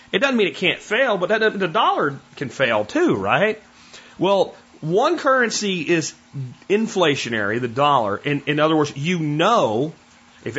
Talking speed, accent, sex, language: 145 wpm, American, male, English